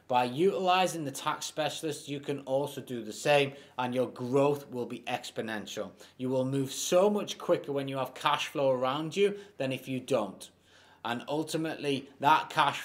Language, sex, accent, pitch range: English, male, British, 120-145 Hz